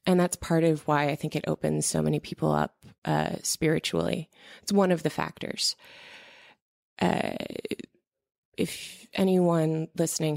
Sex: female